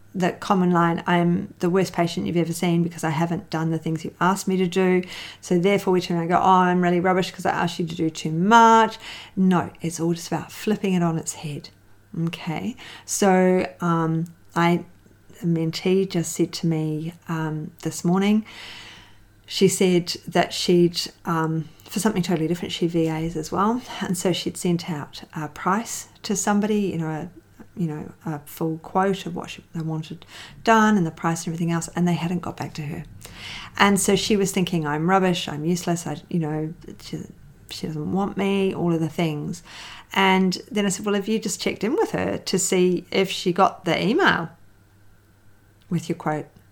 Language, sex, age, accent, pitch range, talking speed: English, female, 40-59, Australian, 160-190 Hz, 200 wpm